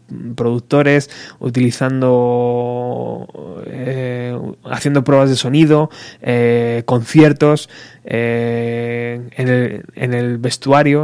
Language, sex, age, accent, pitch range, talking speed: Spanish, male, 20-39, Spanish, 120-145 Hz, 80 wpm